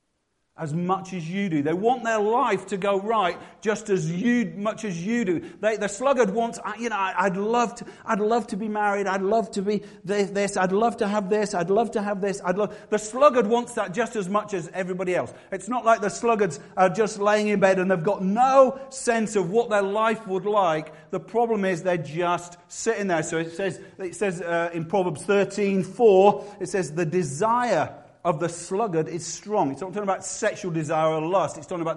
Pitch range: 175-215 Hz